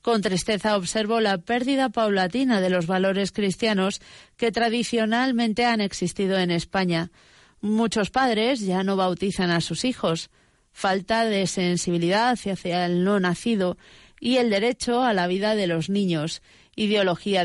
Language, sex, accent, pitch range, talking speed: Spanish, female, Spanish, 180-235 Hz, 140 wpm